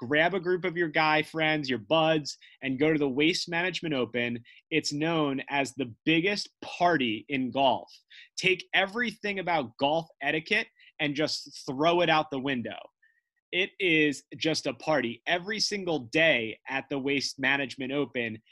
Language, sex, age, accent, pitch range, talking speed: English, male, 30-49, American, 130-175 Hz, 160 wpm